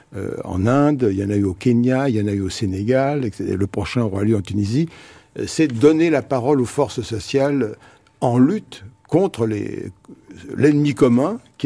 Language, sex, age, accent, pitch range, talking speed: French, male, 60-79, French, 105-135 Hz, 200 wpm